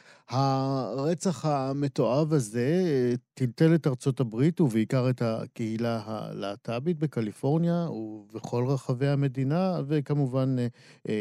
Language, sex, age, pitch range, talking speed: Hebrew, male, 50-69, 110-140 Hz, 85 wpm